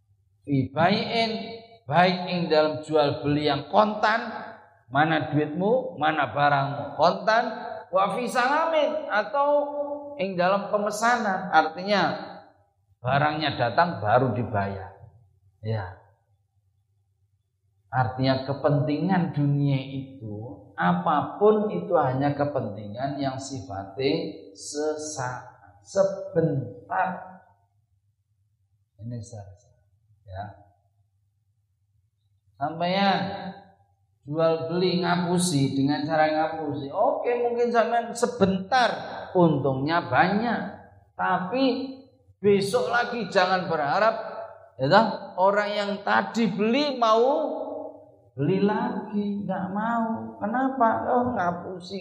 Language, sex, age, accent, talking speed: Indonesian, male, 40-59, native, 80 wpm